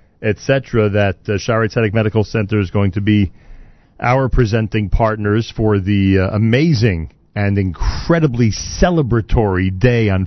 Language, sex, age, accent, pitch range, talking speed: English, male, 40-59, American, 100-140 Hz, 130 wpm